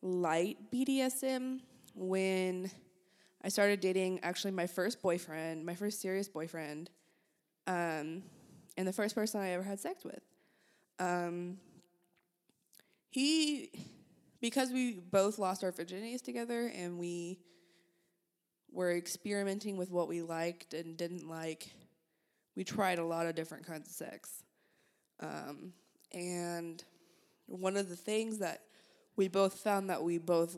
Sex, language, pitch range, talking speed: female, English, 165-200 Hz, 130 wpm